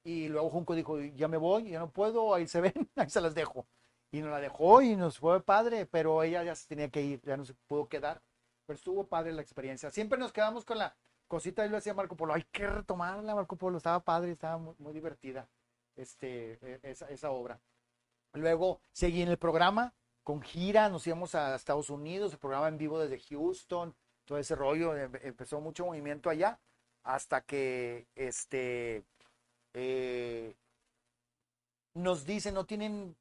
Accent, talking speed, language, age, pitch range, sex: Mexican, 185 wpm, Spanish, 40-59, 125-175 Hz, male